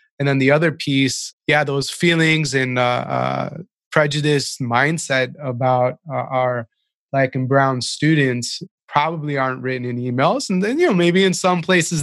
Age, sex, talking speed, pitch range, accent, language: 20-39, male, 165 wpm, 130-155 Hz, American, English